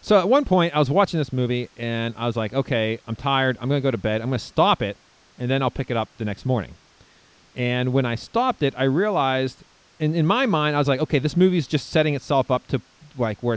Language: English